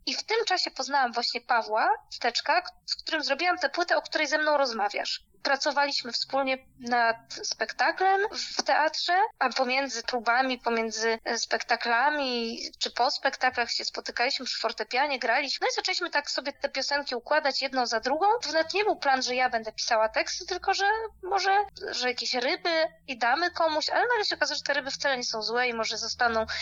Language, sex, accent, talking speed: Polish, female, native, 185 wpm